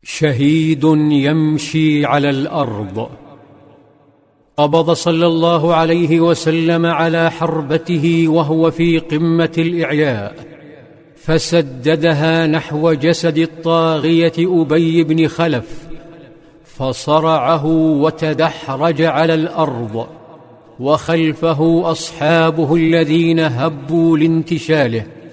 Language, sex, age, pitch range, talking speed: Arabic, male, 50-69, 155-165 Hz, 75 wpm